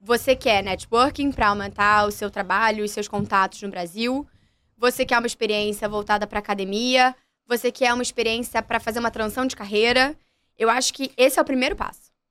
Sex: female